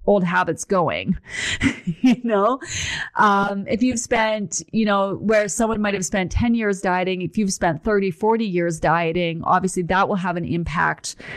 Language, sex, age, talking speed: English, female, 30-49, 170 wpm